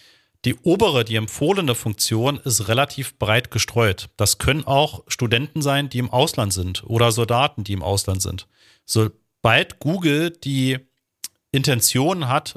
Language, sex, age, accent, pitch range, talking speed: German, male, 40-59, German, 105-140 Hz, 140 wpm